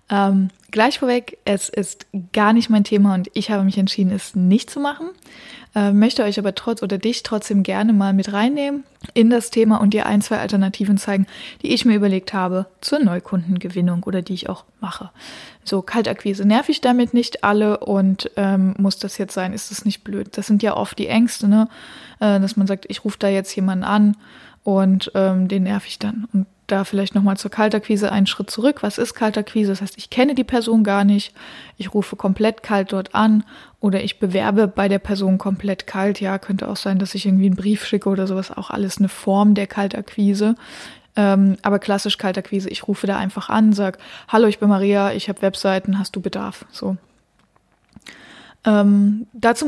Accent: German